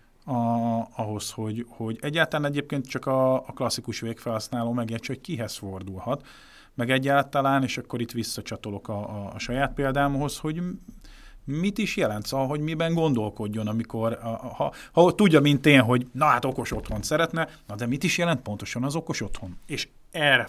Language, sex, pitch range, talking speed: Hungarian, male, 110-140 Hz, 175 wpm